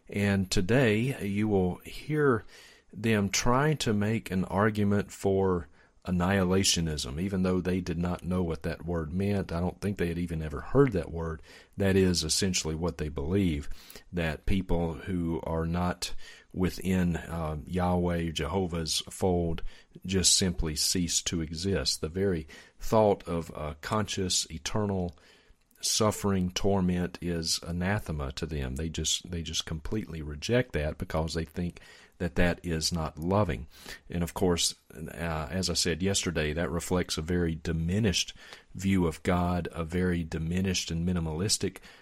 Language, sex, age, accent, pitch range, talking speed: English, male, 40-59, American, 80-95 Hz, 145 wpm